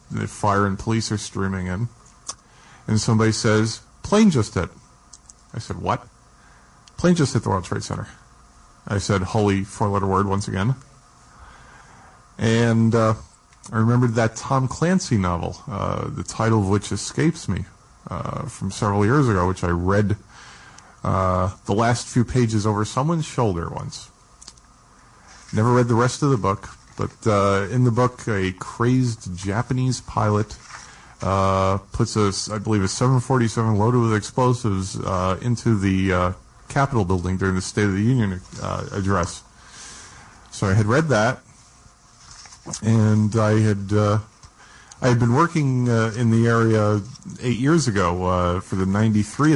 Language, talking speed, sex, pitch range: English, 155 wpm, male, 95-120 Hz